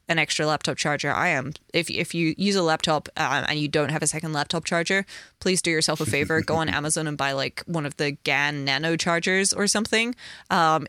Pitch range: 150-175 Hz